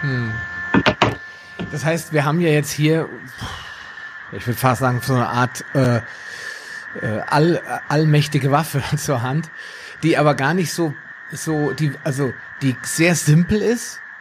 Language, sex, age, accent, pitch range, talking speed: German, male, 30-49, German, 130-175 Hz, 140 wpm